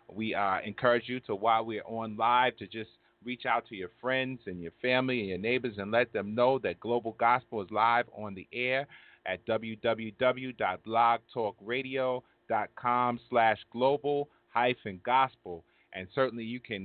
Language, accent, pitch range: English, American, 105-125 Hz